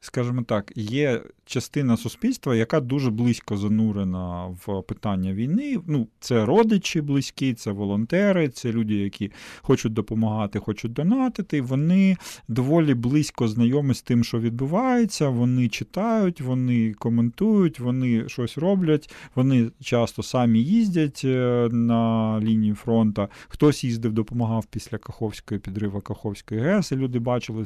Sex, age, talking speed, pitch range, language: male, 40-59, 125 wpm, 110-135 Hz, Ukrainian